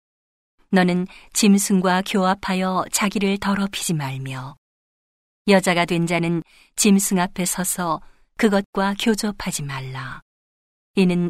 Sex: female